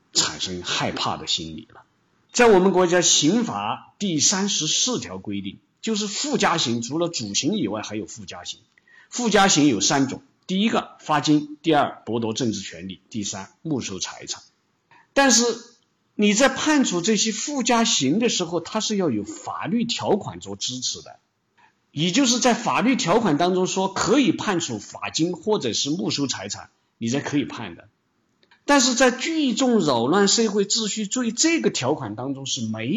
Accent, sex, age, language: native, male, 50-69, Chinese